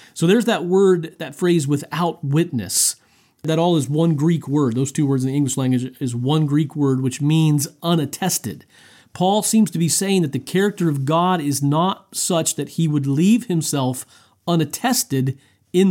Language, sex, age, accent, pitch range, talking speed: English, male, 40-59, American, 140-190 Hz, 180 wpm